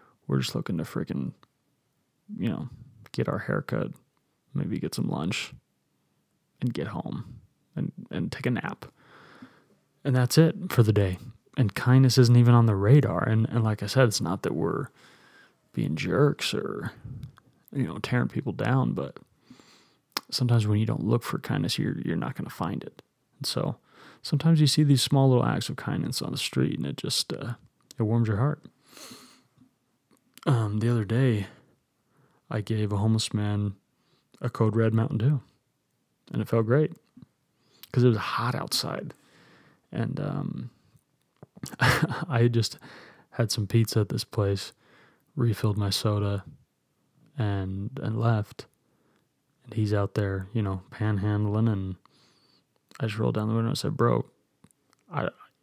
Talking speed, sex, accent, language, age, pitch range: 155 wpm, male, American, English, 30-49, 105-130 Hz